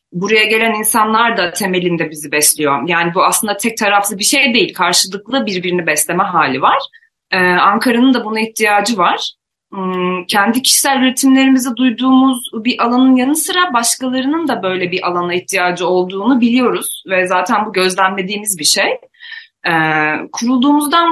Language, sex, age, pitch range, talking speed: Turkish, female, 30-49, 185-270 Hz, 135 wpm